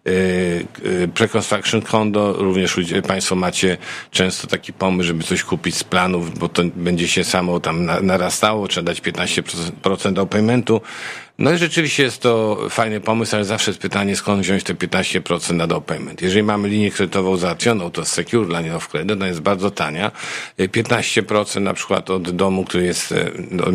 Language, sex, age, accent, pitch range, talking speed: Polish, male, 50-69, native, 90-105 Hz, 170 wpm